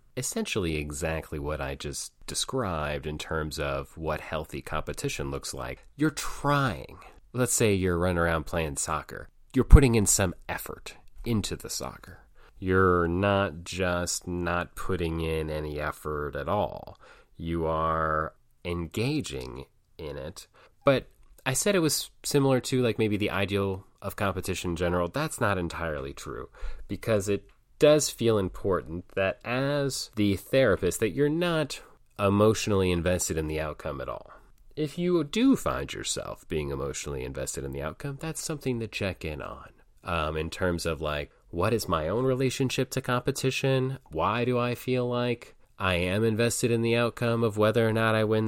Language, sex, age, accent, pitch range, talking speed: English, male, 30-49, American, 85-125 Hz, 160 wpm